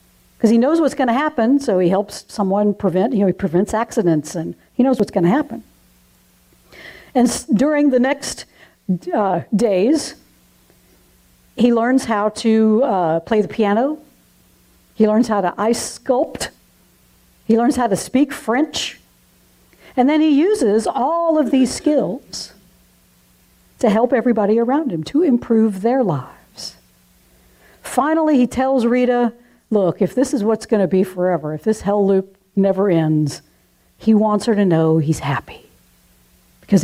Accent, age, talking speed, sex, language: American, 60-79, 150 wpm, female, English